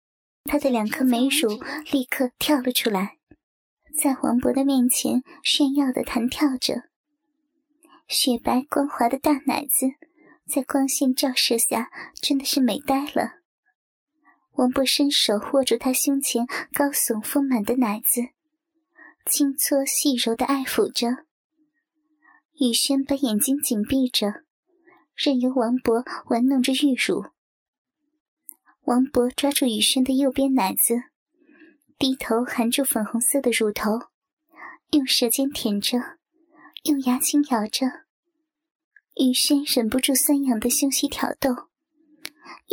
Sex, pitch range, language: male, 245-300 Hz, Chinese